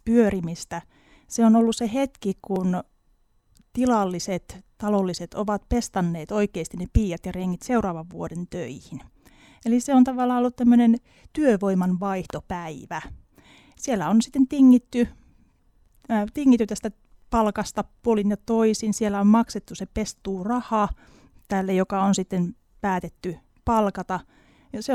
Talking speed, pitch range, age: 125 wpm, 190-230 Hz, 30-49